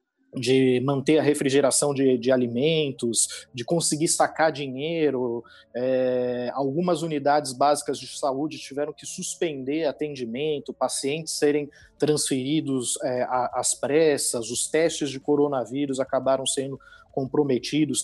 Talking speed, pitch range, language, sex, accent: 105 wpm, 130-160 Hz, Portuguese, male, Brazilian